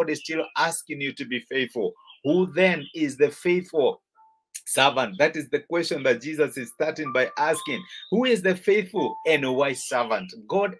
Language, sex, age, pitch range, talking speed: English, male, 50-69, 155-210 Hz, 170 wpm